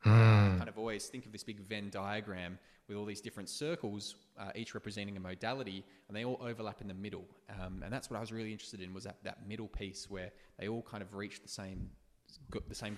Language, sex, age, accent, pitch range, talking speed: English, male, 20-39, Australian, 95-110 Hz, 230 wpm